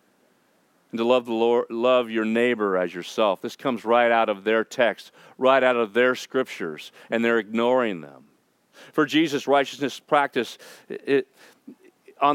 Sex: male